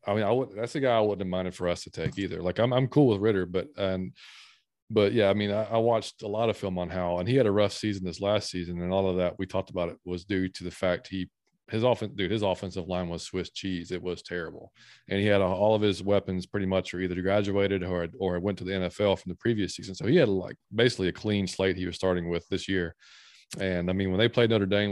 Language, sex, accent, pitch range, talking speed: English, male, American, 90-105 Hz, 285 wpm